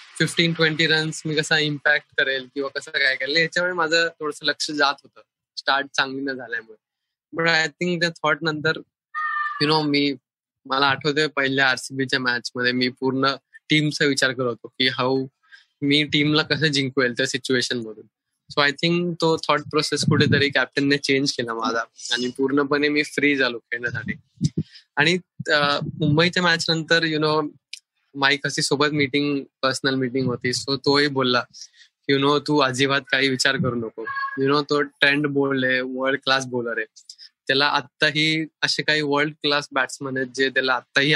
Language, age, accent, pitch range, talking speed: Marathi, 20-39, native, 135-155 Hz, 175 wpm